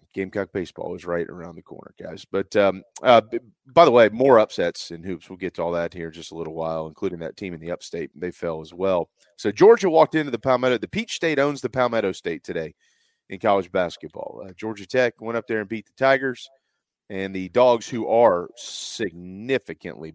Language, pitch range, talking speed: English, 100-160 Hz, 215 wpm